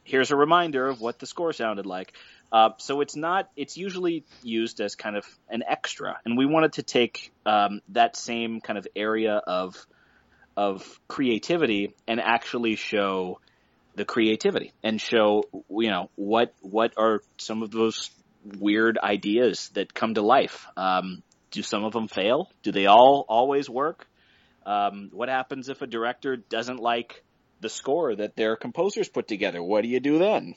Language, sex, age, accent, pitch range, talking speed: English, male, 30-49, American, 105-130 Hz, 170 wpm